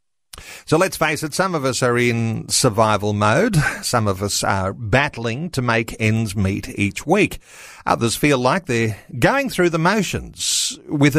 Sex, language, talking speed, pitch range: male, English, 165 wpm, 115-155 Hz